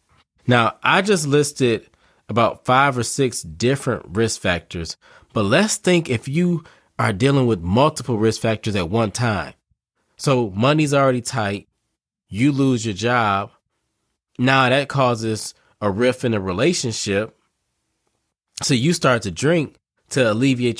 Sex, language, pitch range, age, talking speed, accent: male, English, 105-130 Hz, 20-39, 140 wpm, American